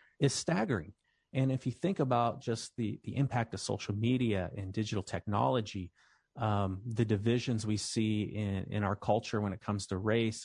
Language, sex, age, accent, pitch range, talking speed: English, male, 30-49, American, 105-130 Hz, 180 wpm